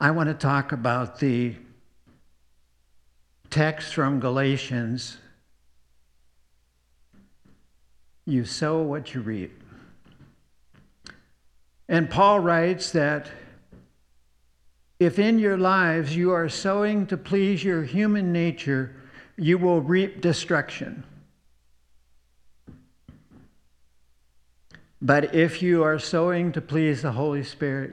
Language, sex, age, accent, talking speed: English, male, 60-79, American, 95 wpm